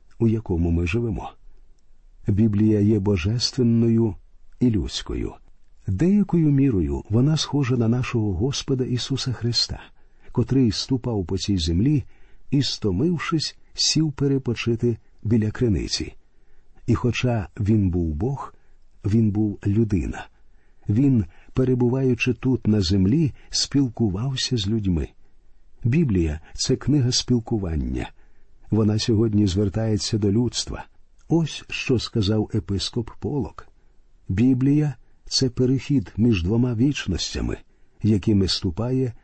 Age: 50-69